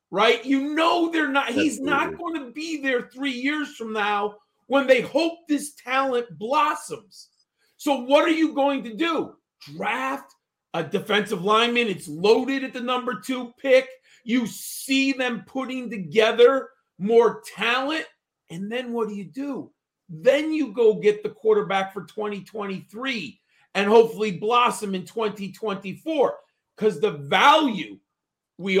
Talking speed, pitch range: 145 wpm, 205-275 Hz